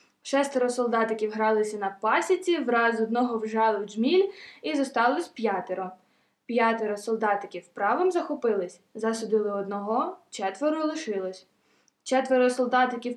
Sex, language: female, Ukrainian